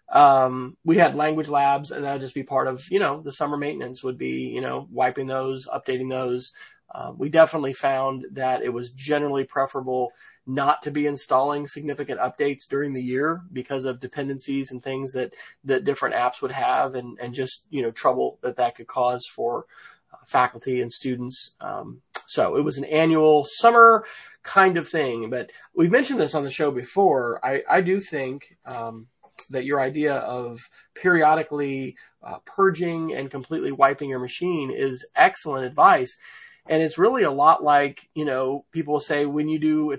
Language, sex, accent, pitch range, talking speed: English, male, American, 130-170 Hz, 180 wpm